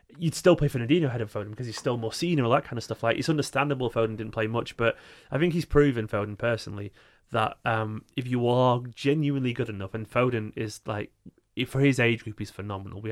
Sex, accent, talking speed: male, British, 230 wpm